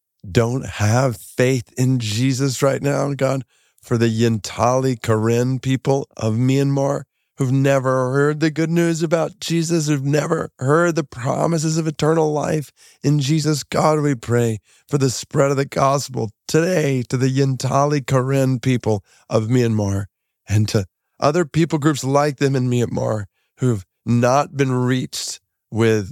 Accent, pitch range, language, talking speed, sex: American, 100-140 Hz, English, 145 wpm, male